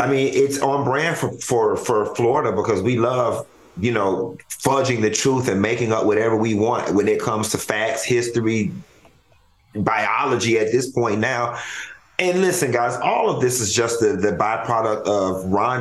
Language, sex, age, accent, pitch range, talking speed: English, male, 40-59, American, 115-140 Hz, 180 wpm